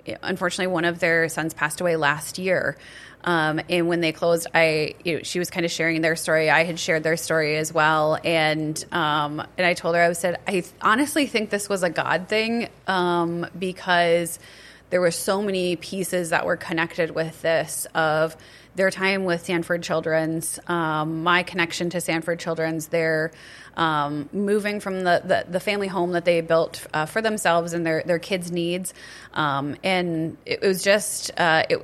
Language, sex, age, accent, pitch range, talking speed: English, female, 30-49, American, 160-185 Hz, 185 wpm